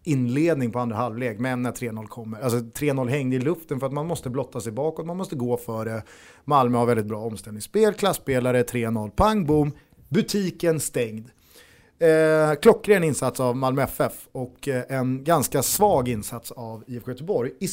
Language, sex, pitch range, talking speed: Swedish, male, 125-180 Hz, 170 wpm